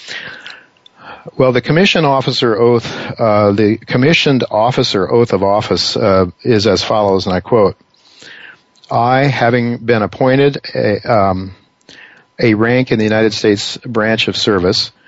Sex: male